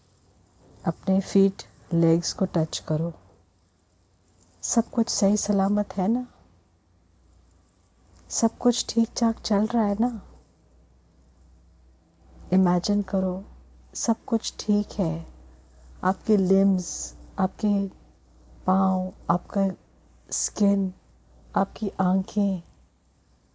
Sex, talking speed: female, 85 wpm